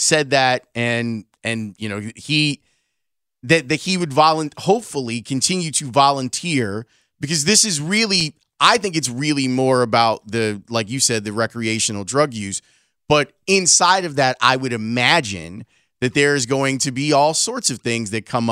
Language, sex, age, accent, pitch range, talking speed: English, male, 30-49, American, 115-150 Hz, 170 wpm